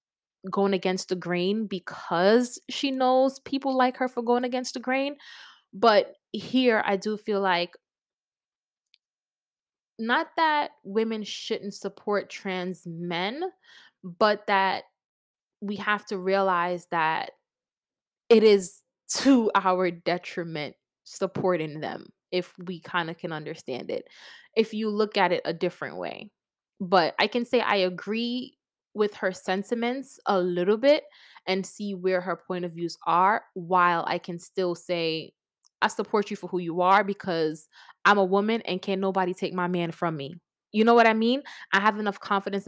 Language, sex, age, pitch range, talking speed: English, female, 20-39, 180-220 Hz, 155 wpm